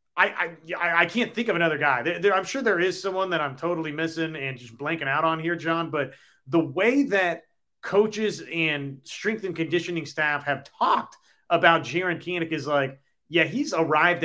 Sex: male